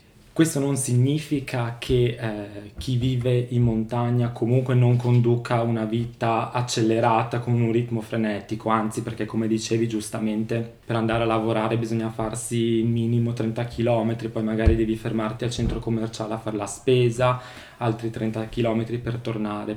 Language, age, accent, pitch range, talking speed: Italian, 20-39, native, 110-130 Hz, 150 wpm